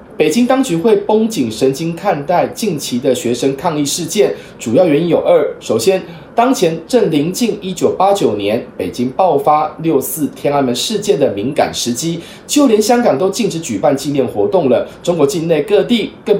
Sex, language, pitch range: male, Chinese, 160-235 Hz